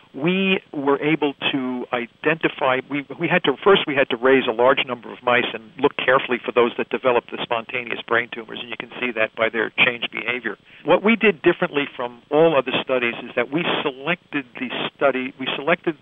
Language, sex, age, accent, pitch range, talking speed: English, male, 50-69, American, 125-170 Hz, 205 wpm